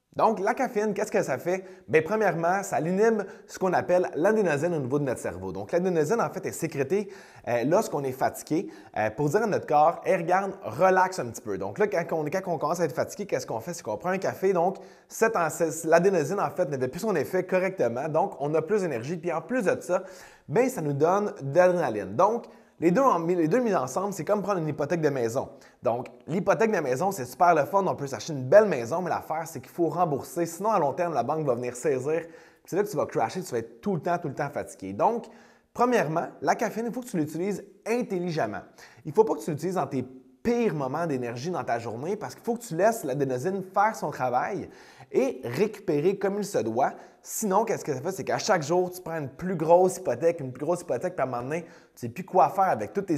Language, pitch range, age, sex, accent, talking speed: French, 145-195 Hz, 20-39, male, Canadian, 240 wpm